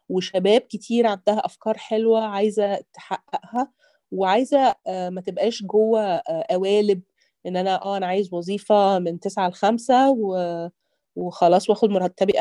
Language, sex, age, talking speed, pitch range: Arabic, female, 30-49, 120 wpm, 175-215 Hz